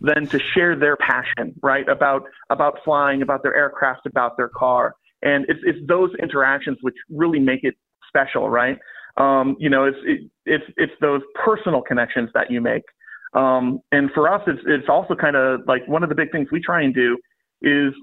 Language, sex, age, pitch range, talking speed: English, male, 30-49, 135-170 Hz, 195 wpm